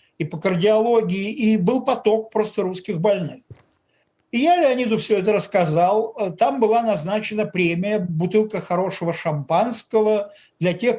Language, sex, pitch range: Russian, male, 175-220 Hz